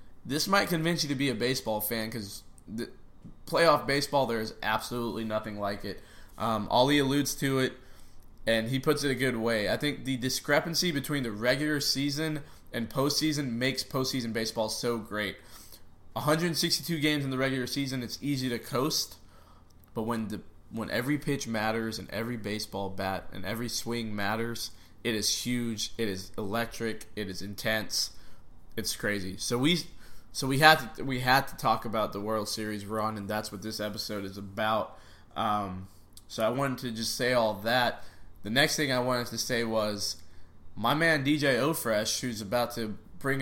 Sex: male